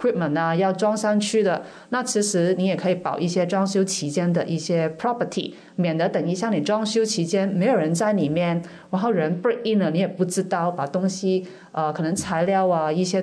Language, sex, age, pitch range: Chinese, female, 30-49, 165-200 Hz